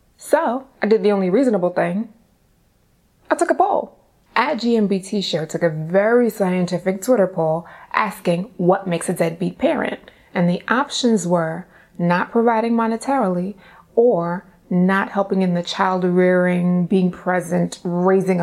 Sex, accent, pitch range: female, American, 185-230 Hz